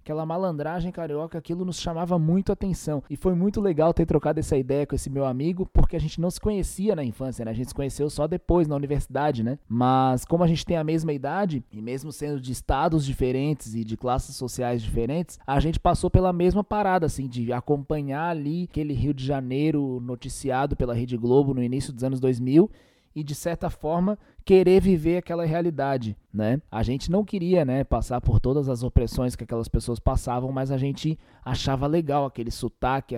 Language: Portuguese